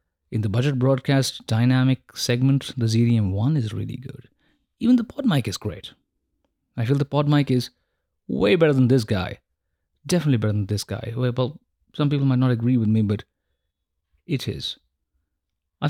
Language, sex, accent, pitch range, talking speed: English, male, Indian, 100-135 Hz, 170 wpm